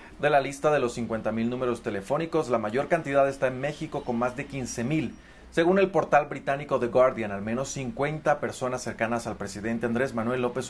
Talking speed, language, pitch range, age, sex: 190 wpm, Spanish, 120-145 Hz, 30-49, male